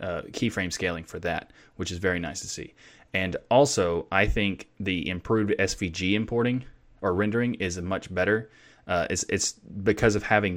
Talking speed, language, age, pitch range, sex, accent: 175 wpm, English, 20-39, 90-105 Hz, male, American